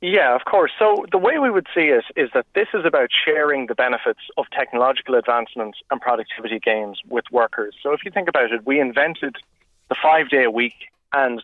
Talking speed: 195 wpm